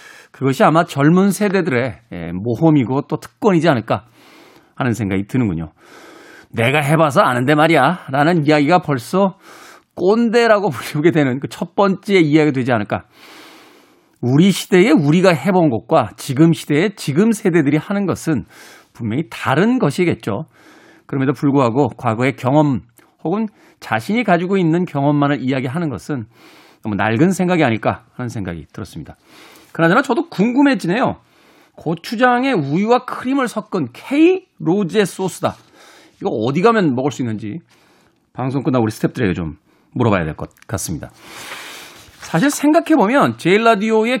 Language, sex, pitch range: Korean, male, 140-210 Hz